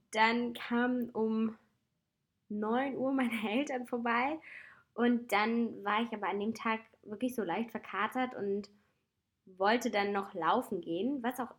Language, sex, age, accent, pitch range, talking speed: German, female, 20-39, German, 195-230 Hz, 145 wpm